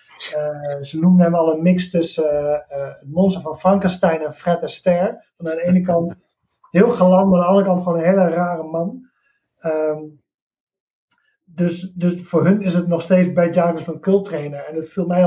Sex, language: male, Dutch